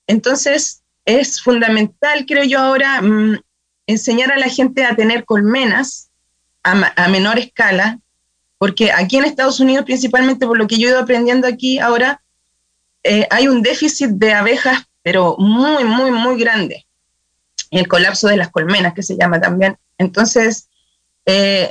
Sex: female